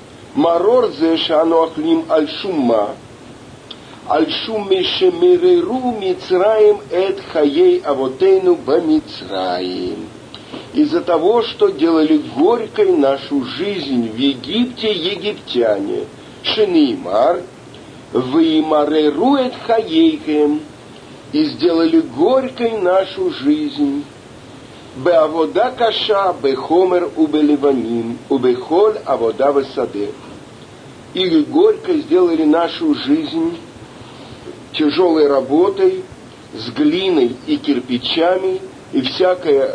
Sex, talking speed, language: male, 60 wpm, Russian